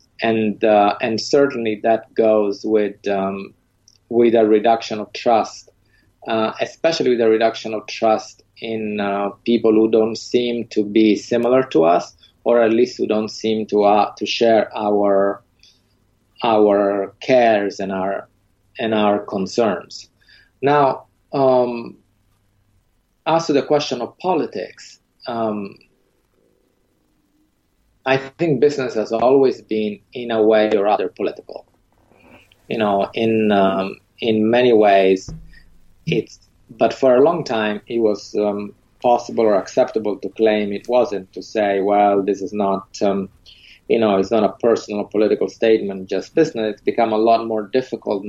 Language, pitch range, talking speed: English, 100-115 Hz, 145 wpm